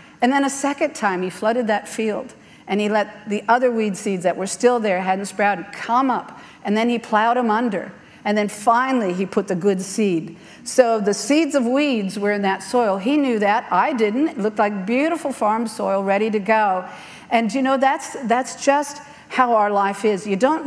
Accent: American